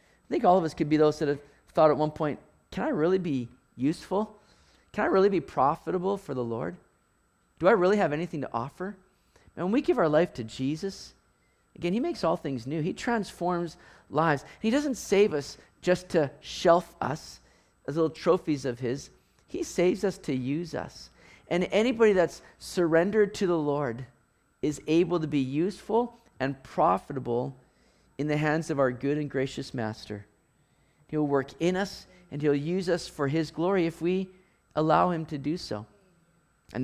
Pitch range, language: 135-175 Hz, English